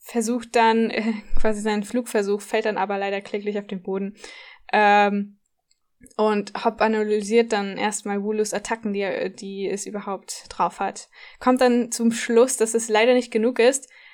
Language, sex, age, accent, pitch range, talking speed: German, female, 10-29, German, 210-235 Hz, 155 wpm